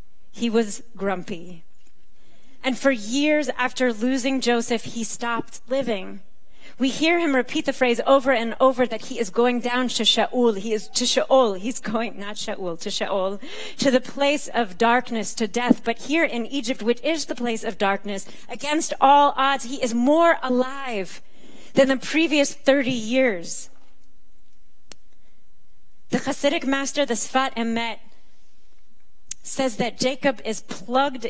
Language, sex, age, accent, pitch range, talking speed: English, female, 30-49, American, 220-270 Hz, 150 wpm